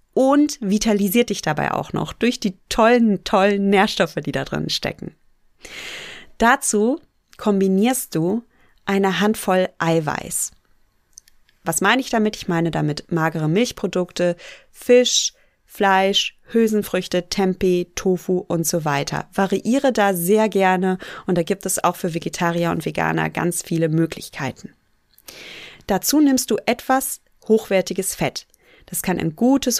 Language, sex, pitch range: German, female, 175-225 Hz